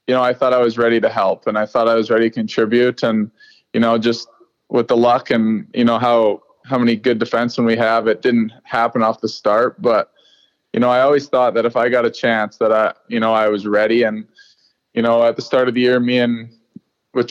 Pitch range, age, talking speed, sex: 115-130 Hz, 20-39, 245 wpm, male